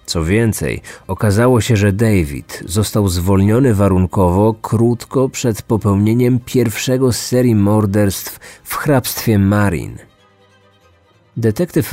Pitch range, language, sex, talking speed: 100-120 Hz, Polish, male, 100 wpm